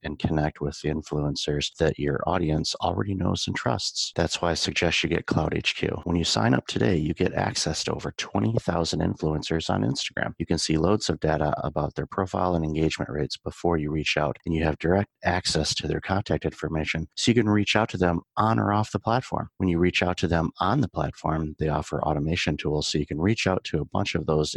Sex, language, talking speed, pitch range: male, English, 230 wpm, 75-90 Hz